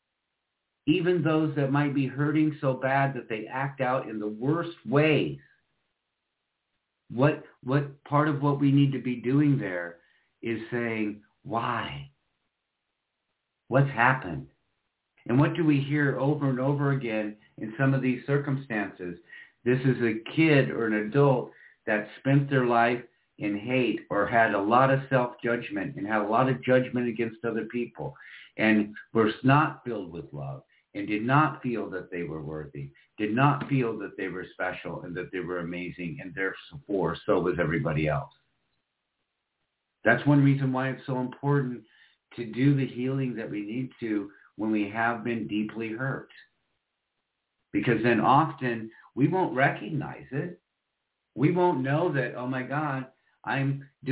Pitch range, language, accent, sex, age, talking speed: 110-140 Hz, English, American, male, 50-69, 155 wpm